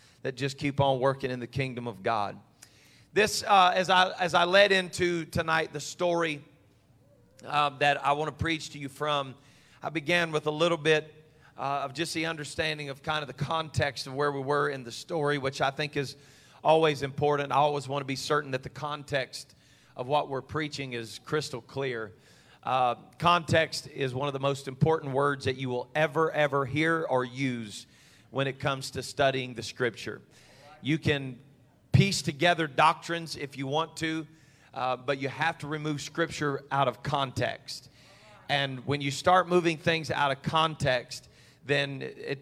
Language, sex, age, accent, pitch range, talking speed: English, male, 40-59, American, 135-155 Hz, 185 wpm